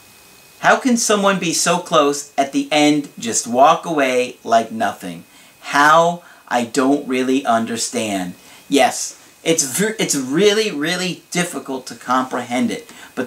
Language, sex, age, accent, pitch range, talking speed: English, male, 40-59, American, 130-175 Hz, 135 wpm